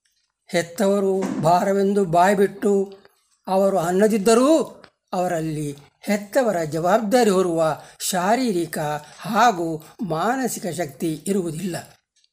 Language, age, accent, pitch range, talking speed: Kannada, 60-79, native, 180-230 Hz, 70 wpm